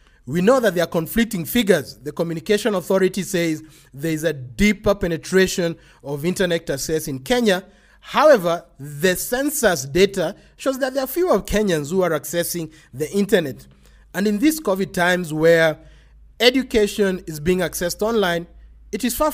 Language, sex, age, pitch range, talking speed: English, male, 30-49, 155-210 Hz, 155 wpm